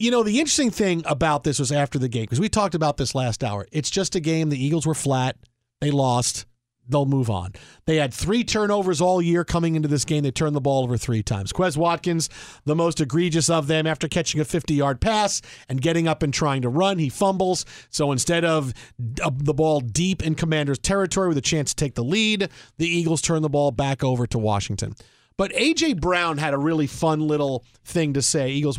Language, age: English, 40-59